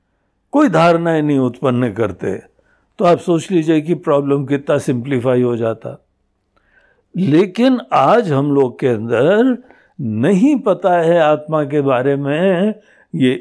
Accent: native